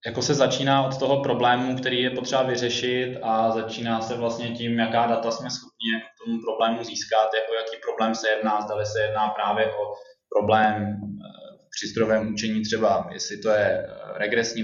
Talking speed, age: 170 wpm, 20-39